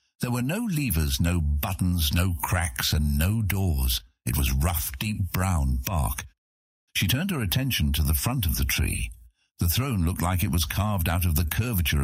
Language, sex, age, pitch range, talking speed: English, male, 60-79, 75-100 Hz, 190 wpm